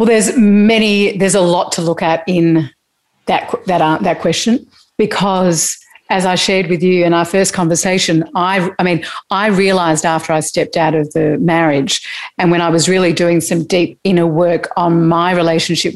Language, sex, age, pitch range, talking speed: English, female, 50-69, 170-195 Hz, 185 wpm